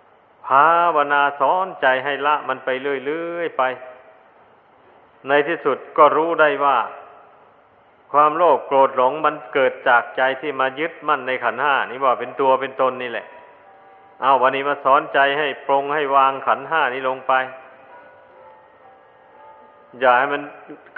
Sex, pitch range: male, 130-150 Hz